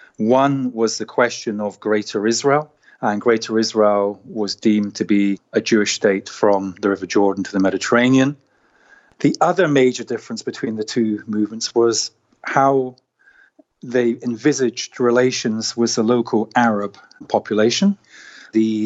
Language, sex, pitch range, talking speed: English, male, 105-125 Hz, 135 wpm